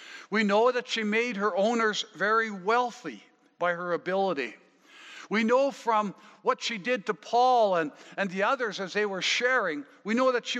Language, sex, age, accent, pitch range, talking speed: English, male, 60-79, American, 195-255 Hz, 180 wpm